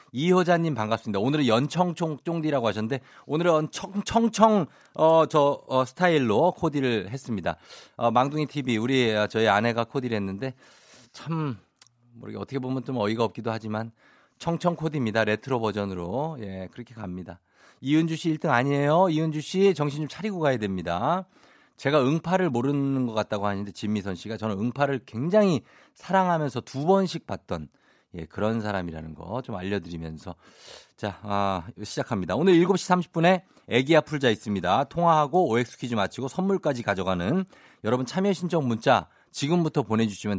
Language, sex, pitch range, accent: Korean, male, 110-165 Hz, native